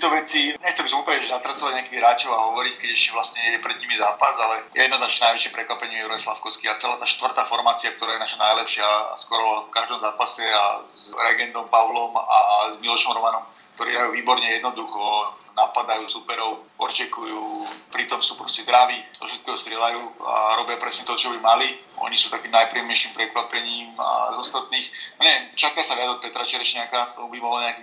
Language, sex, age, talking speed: Slovak, male, 40-59, 180 wpm